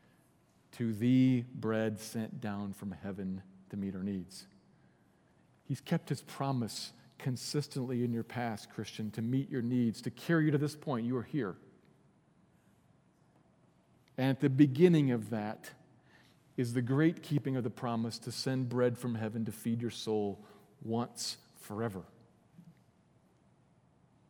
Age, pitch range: 40-59, 115-150 Hz